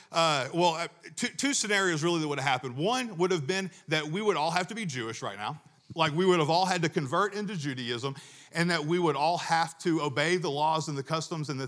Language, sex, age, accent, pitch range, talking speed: English, male, 40-59, American, 145-195 Hz, 250 wpm